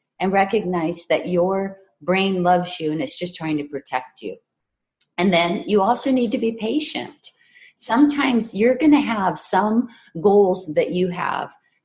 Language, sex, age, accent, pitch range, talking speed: English, female, 30-49, American, 180-240 Hz, 155 wpm